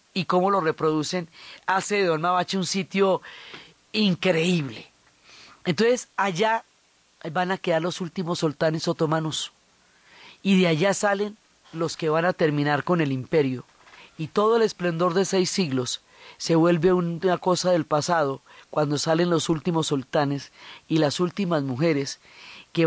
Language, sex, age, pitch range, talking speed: Spanish, female, 40-59, 150-185 Hz, 145 wpm